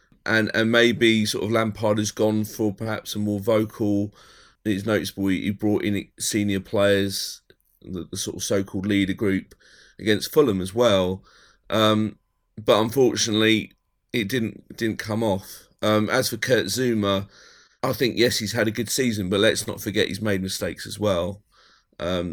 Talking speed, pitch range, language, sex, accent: 165 wpm, 95-110 Hz, English, male, British